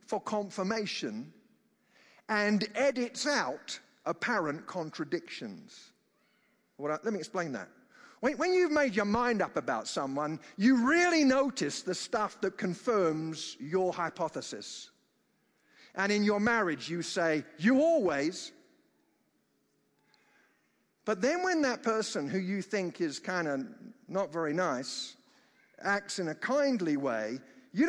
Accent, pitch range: British, 180-260 Hz